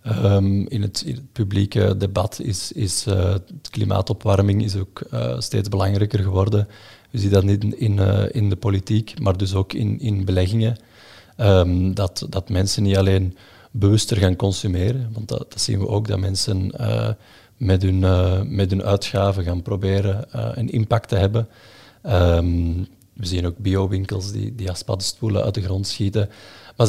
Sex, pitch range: male, 95-110 Hz